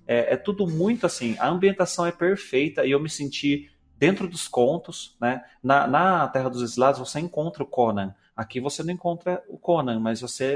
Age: 30-49